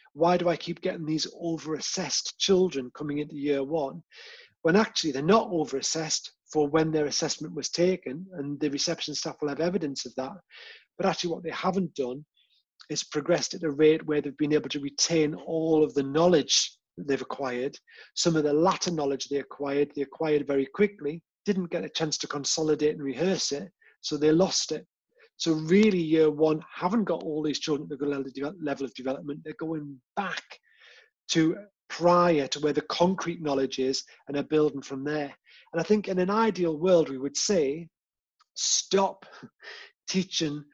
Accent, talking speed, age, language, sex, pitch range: British, 180 wpm, 30-49, English, male, 145-175 Hz